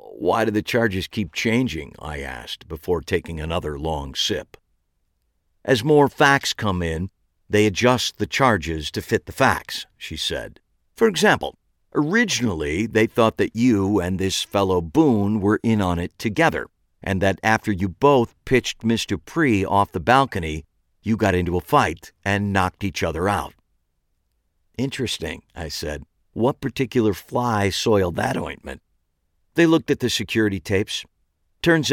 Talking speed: 150 wpm